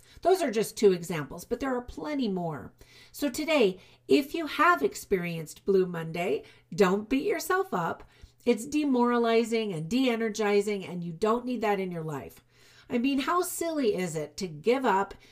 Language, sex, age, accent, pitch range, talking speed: English, female, 50-69, American, 180-255 Hz, 170 wpm